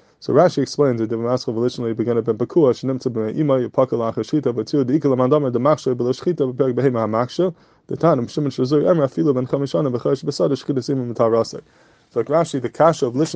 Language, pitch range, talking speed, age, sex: English, 120-140 Hz, 105 wpm, 20-39, male